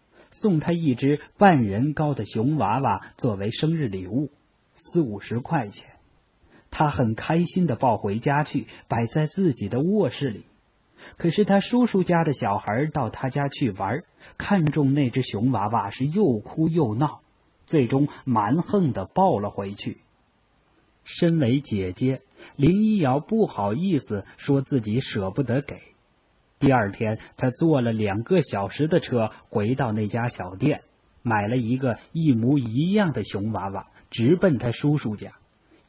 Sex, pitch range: male, 110-155 Hz